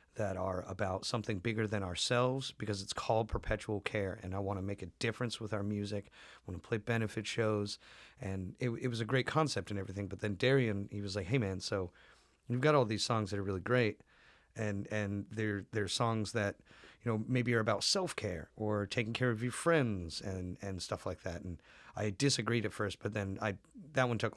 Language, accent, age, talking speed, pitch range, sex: English, American, 30-49, 220 wpm, 95-115 Hz, male